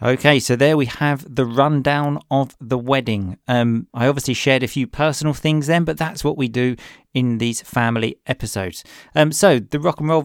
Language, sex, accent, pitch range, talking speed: English, male, British, 120-150 Hz, 200 wpm